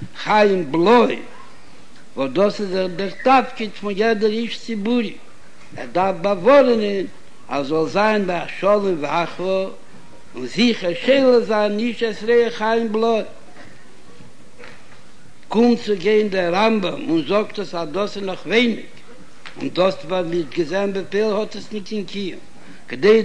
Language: Hebrew